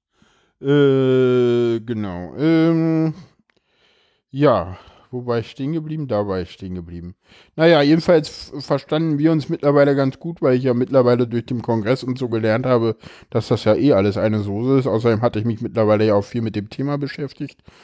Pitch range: 115-155 Hz